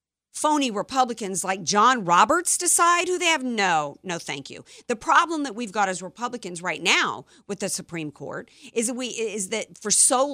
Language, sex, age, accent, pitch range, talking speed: English, female, 50-69, American, 185-260 Hz, 190 wpm